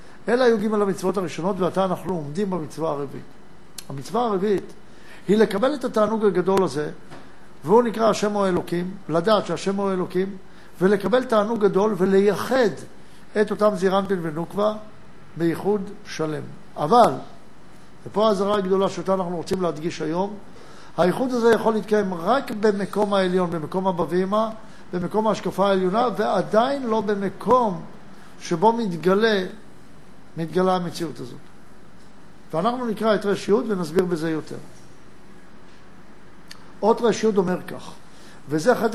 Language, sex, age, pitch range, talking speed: Hebrew, male, 60-79, 180-220 Hz, 120 wpm